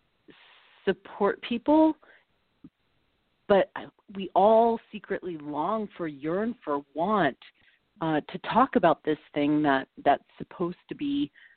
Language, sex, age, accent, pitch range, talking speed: English, female, 40-59, American, 150-185 Hz, 115 wpm